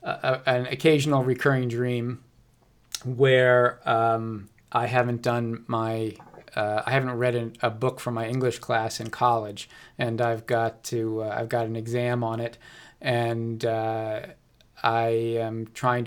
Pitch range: 115-125 Hz